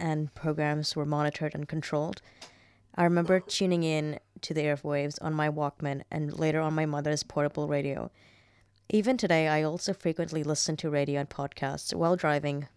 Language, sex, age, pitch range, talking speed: English, female, 20-39, 145-175 Hz, 165 wpm